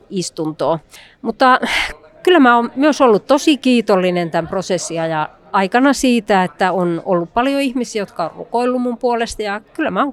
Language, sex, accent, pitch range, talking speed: Finnish, female, native, 170-225 Hz, 165 wpm